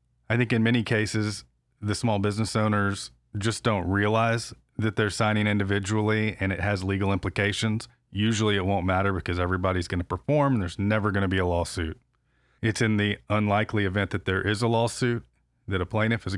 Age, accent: 30-49, American